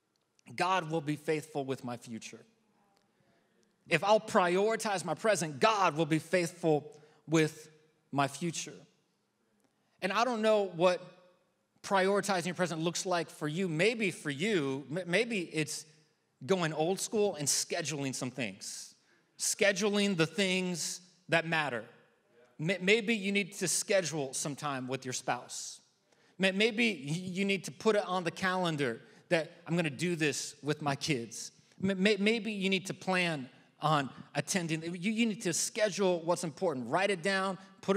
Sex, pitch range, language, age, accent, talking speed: male, 160-200 Hz, English, 30-49, American, 145 wpm